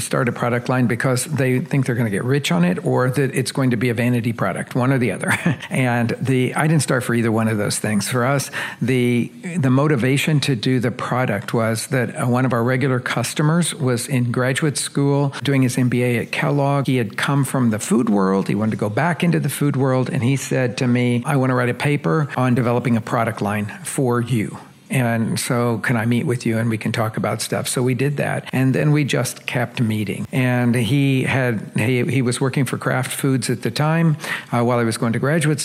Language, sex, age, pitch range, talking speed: English, male, 50-69, 120-140 Hz, 235 wpm